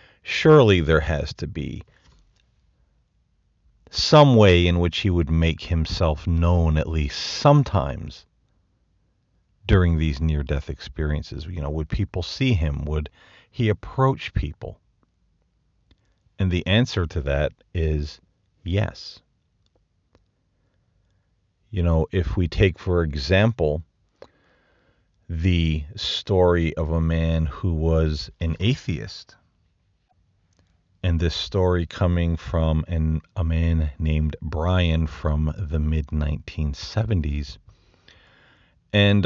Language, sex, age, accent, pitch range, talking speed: English, male, 40-59, American, 80-100 Hz, 100 wpm